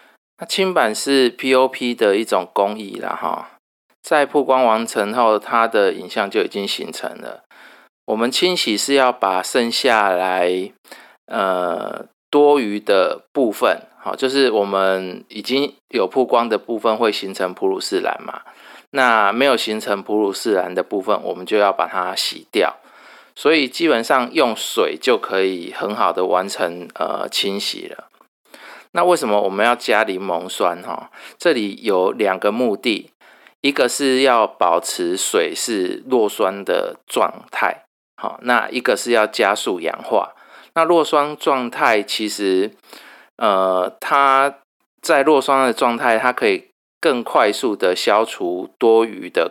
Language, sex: Chinese, male